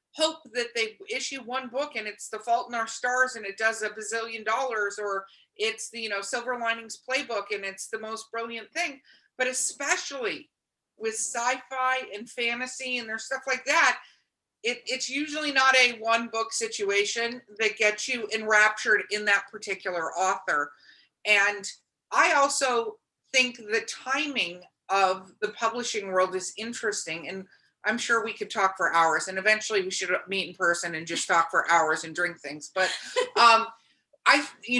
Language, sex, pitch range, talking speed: English, female, 205-260 Hz, 165 wpm